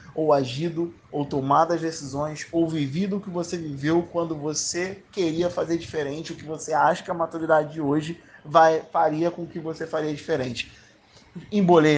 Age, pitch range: 20-39, 155-200 Hz